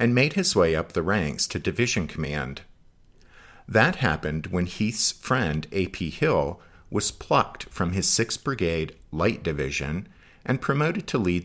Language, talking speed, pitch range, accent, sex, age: English, 150 wpm, 75-95 Hz, American, male, 50-69